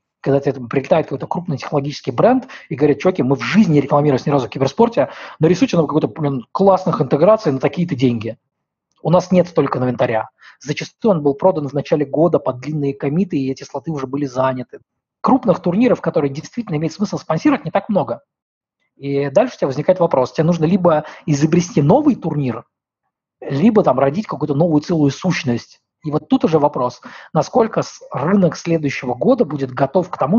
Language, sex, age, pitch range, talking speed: Russian, male, 20-39, 135-175 Hz, 175 wpm